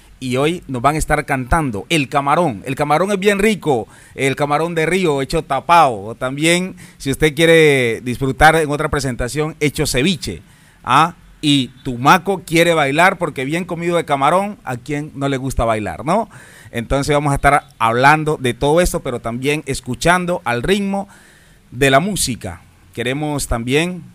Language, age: Spanish, 30-49